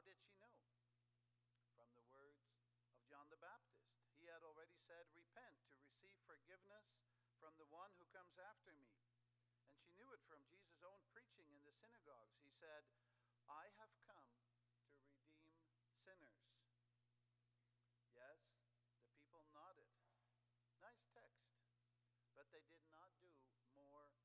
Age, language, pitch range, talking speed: 60-79, English, 120-170 Hz, 140 wpm